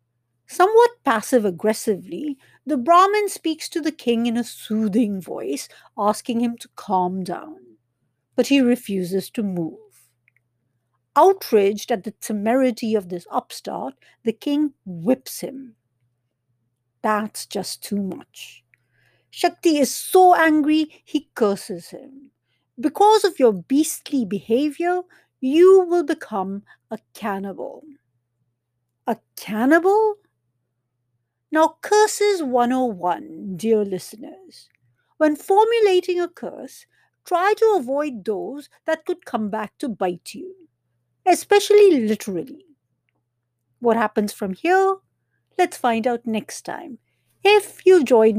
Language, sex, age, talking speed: English, female, 50-69, 110 wpm